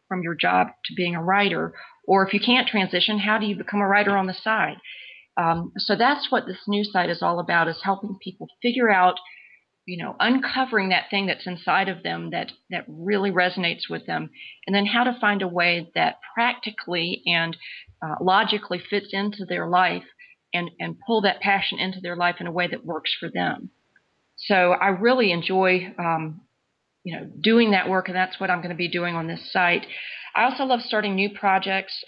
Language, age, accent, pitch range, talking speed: English, 40-59, American, 180-205 Hz, 205 wpm